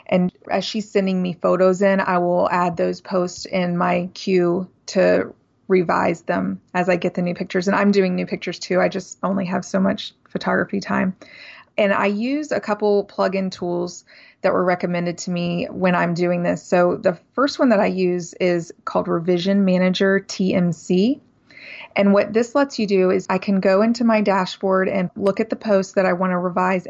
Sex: female